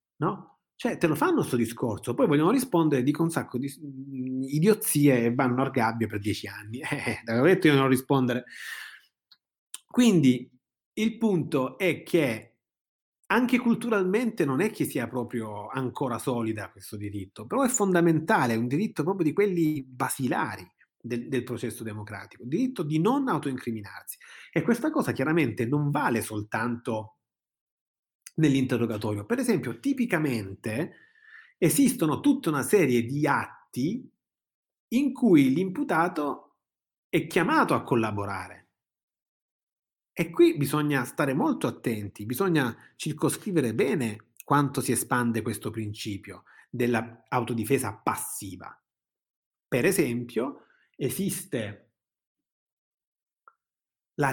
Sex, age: male, 30-49